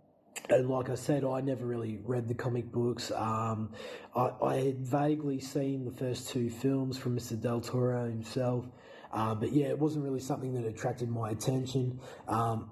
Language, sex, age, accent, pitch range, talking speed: English, male, 20-39, Australian, 115-130 Hz, 180 wpm